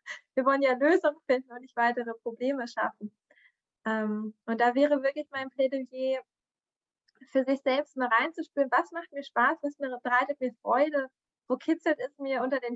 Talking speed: 165 wpm